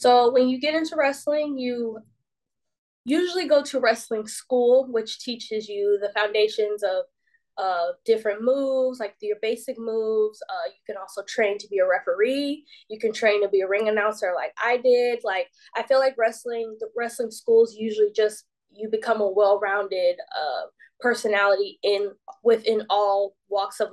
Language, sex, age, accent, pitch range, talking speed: English, female, 10-29, American, 205-265 Hz, 165 wpm